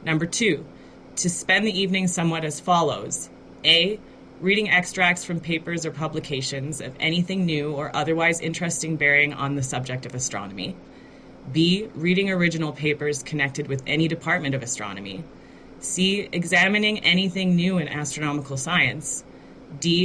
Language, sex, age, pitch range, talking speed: English, female, 30-49, 140-175 Hz, 140 wpm